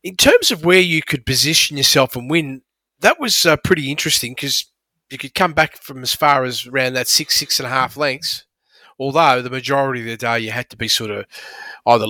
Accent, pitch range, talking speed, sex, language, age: Australian, 120-160 Hz, 210 wpm, male, English, 30-49